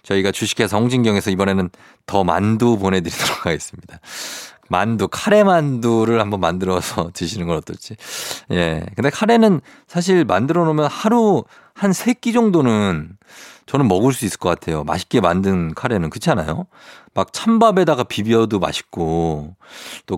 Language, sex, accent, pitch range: Korean, male, native, 90-140 Hz